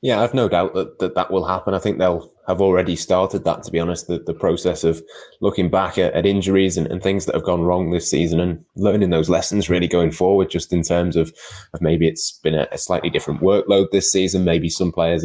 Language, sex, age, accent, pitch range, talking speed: English, male, 20-39, British, 80-90 Hz, 245 wpm